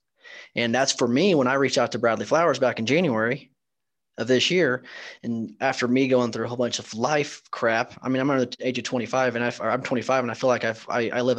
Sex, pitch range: male, 120-130 Hz